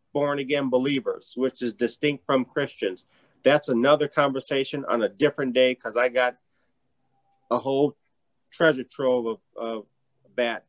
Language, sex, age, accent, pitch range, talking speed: English, male, 40-59, American, 120-155 Hz, 135 wpm